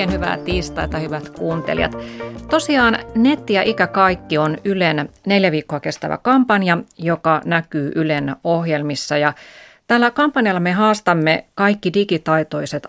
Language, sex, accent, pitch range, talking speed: Finnish, female, native, 150-185 Hz, 125 wpm